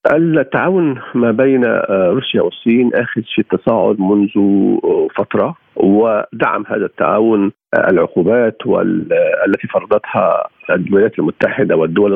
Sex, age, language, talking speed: male, 50-69, Arabic, 100 wpm